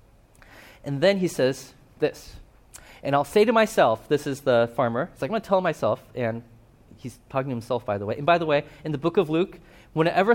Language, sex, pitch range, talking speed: English, male, 125-175 Hz, 225 wpm